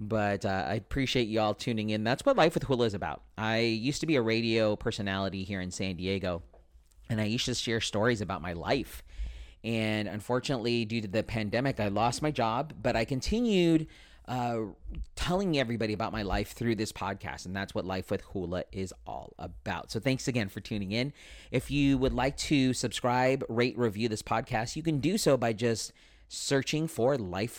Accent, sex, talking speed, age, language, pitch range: American, male, 200 wpm, 40-59, English, 95-125 Hz